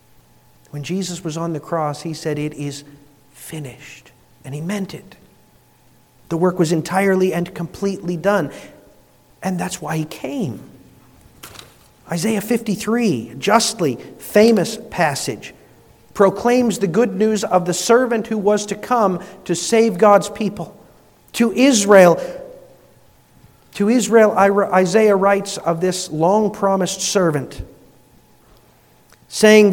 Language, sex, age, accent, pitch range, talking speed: English, male, 50-69, American, 175-220 Hz, 115 wpm